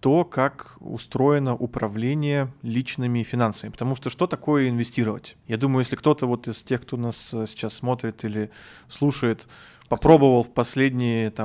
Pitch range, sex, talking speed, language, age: 115-145 Hz, male, 135 wpm, Russian, 20-39